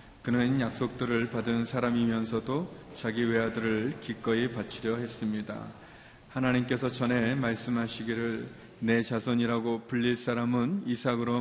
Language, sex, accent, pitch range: Korean, male, native, 115-125 Hz